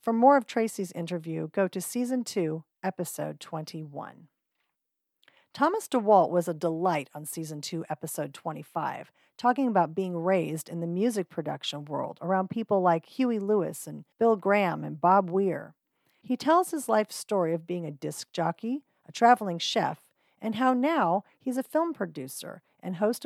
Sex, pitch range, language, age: female, 170-230 Hz, English, 40-59